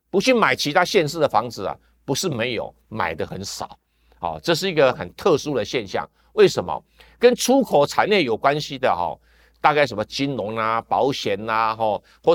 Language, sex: Chinese, male